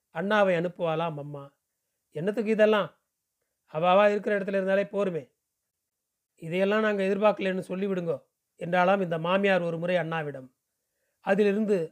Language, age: Tamil, 30-49